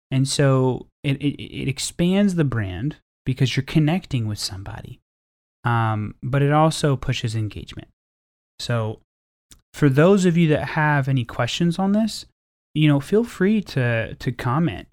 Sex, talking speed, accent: male, 150 wpm, American